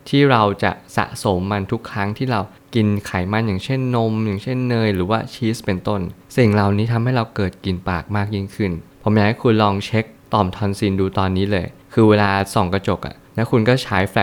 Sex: male